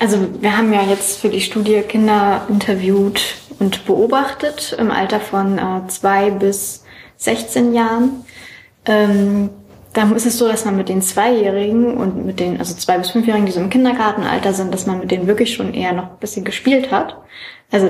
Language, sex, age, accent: German, female, 20-39, German